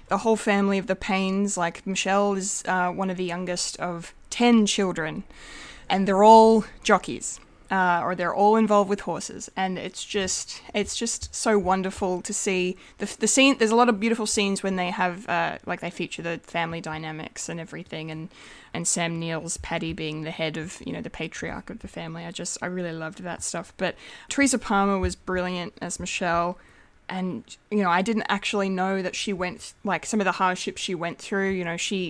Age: 20-39